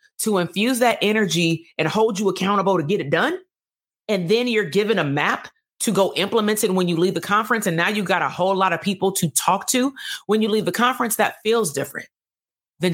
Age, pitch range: 30-49, 160-200 Hz